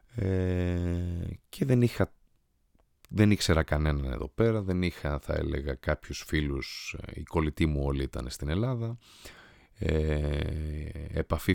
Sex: male